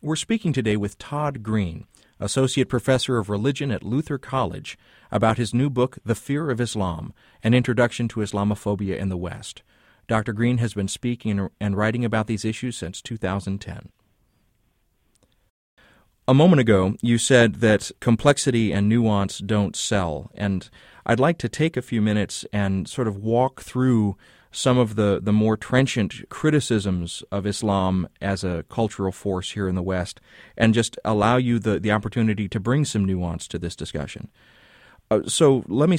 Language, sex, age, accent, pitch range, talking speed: English, male, 30-49, American, 100-125 Hz, 165 wpm